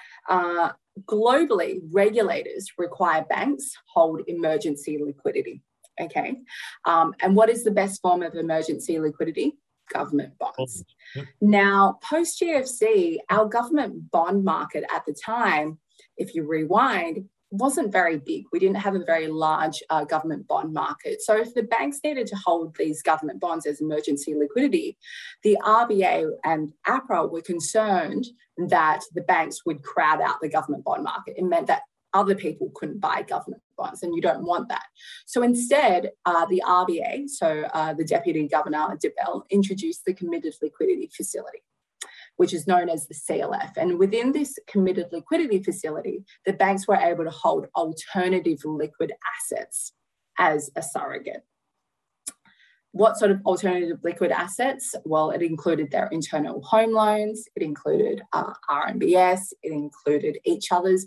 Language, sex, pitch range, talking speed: English, female, 165-255 Hz, 150 wpm